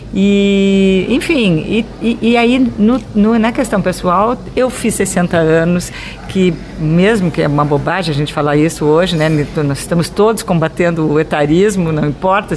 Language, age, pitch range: Portuguese, 50-69, 160-220 Hz